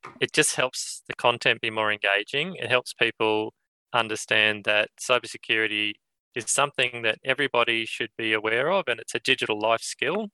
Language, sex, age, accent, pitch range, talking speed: English, male, 20-39, Australian, 110-135 Hz, 165 wpm